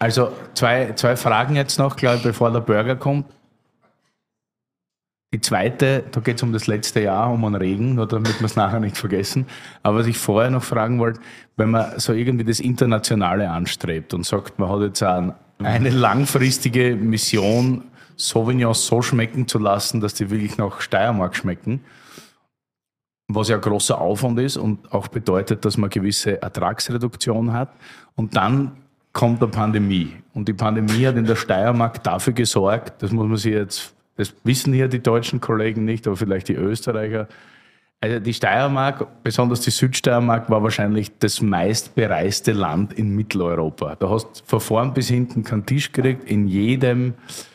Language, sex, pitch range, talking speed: German, male, 105-125 Hz, 170 wpm